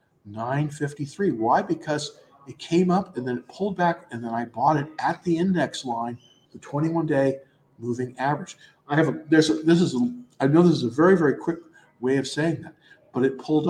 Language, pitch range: English, 135-170 Hz